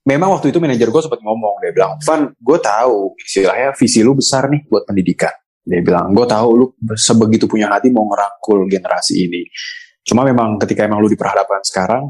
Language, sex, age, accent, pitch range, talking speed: Indonesian, male, 20-39, native, 105-140 Hz, 195 wpm